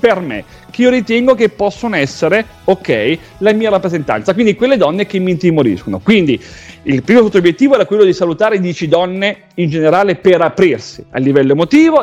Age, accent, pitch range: 40-59, native, 155-240 Hz